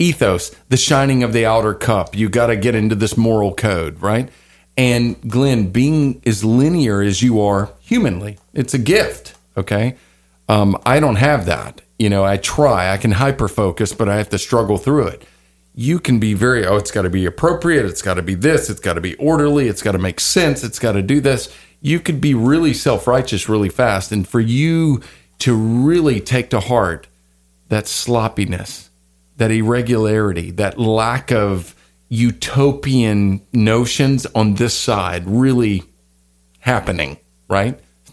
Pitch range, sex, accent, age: 95-125 Hz, male, American, 40-59